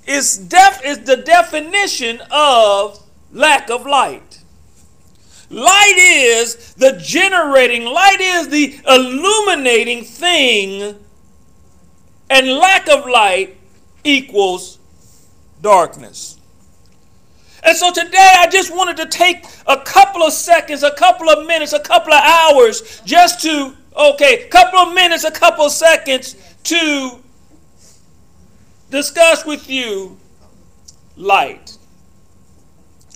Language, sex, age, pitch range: English, male, 40-59, 195-330 Hz